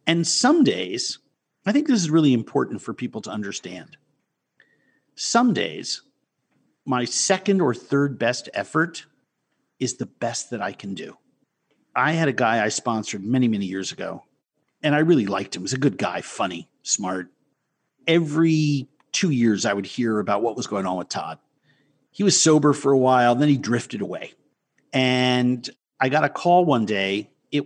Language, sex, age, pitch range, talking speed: English, male, 50-69, 110-150 Hz, 175 wpm